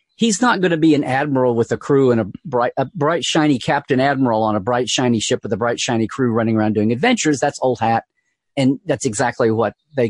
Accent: American